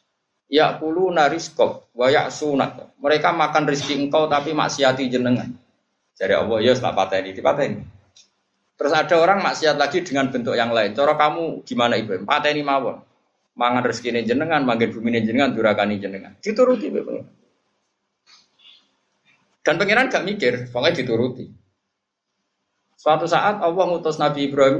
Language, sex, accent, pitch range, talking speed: Indonesian, male, native, 130-180 Hz, 125 wpm